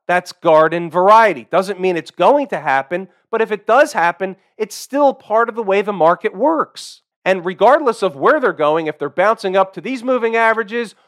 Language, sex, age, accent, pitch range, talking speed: English, male, 40-59, American, 175-235 Hz, 200 wpm